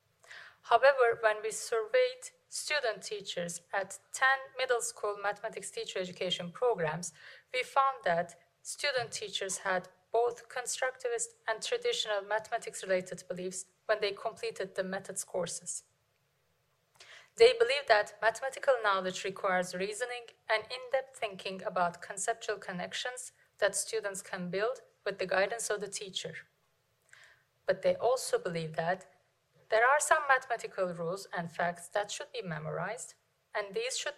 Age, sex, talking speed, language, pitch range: 30-49, female, 130 wpm, Finnish, 185-270 Hz